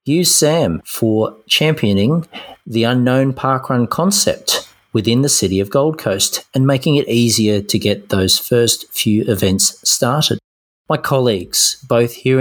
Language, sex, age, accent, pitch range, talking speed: English, male, 40-59, Australian, 105-130 Hz, 140 wpm